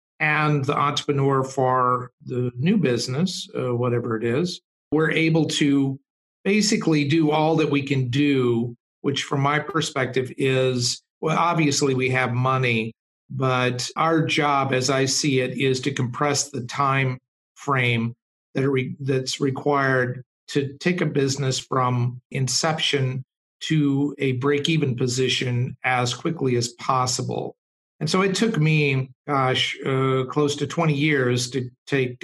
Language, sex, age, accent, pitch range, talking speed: English, male, 50-69, American, 125-145 Hz, 140 wpm